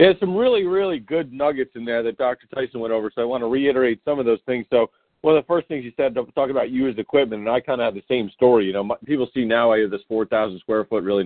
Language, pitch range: English, 105-130 Hz